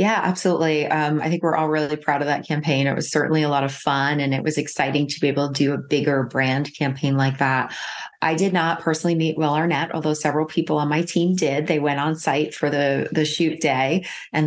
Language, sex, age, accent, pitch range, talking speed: English, female, 30-49, American, 140-160 Hz, 240 wpm